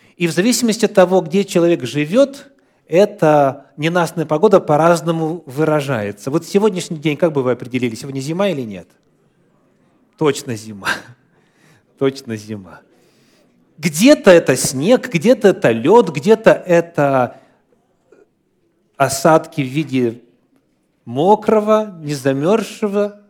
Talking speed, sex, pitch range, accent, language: 105 wpm, male, 125-180 Hz, native, Russian